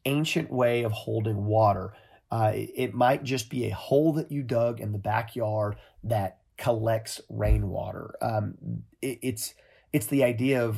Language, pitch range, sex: English, 105-130 Hz, male